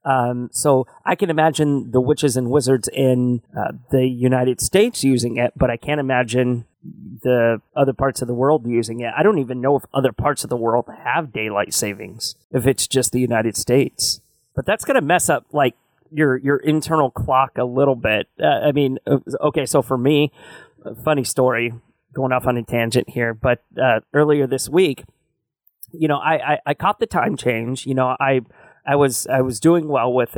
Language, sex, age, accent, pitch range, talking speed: English, male, 30-49, American, 120-145 Hz, 200 wpm